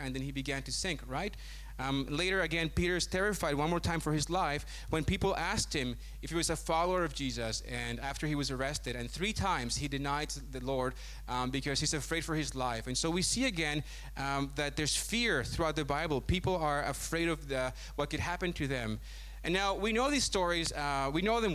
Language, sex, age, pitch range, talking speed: English, male, 30-49, 135-180 Hz, 225 wpm